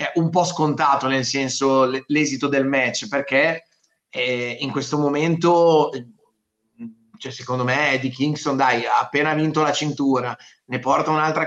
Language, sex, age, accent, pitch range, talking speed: Italian, male, 30-49, native, 135-160 Hz, 135 wpm